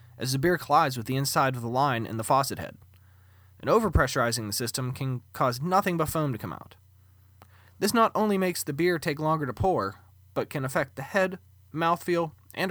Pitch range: 100-165 Hz